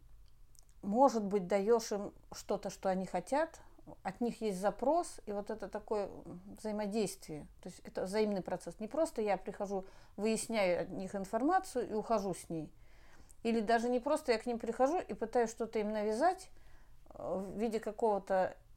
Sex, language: female, Russian